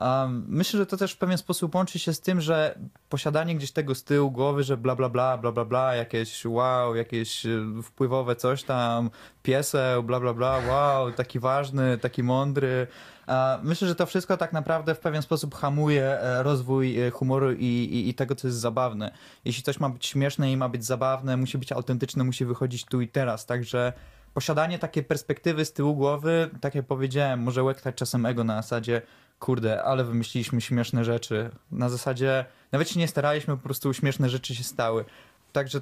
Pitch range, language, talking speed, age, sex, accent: 125-145 Hz, Polish, 185 wpm, 20-39, male, native